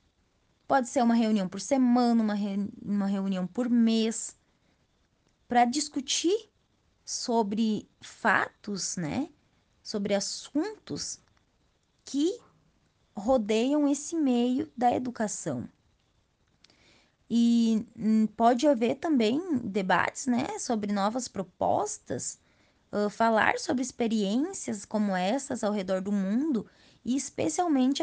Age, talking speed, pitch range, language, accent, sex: 20-39, 100 wpm, 215-275 Hz, Portuguese, Brazilian, female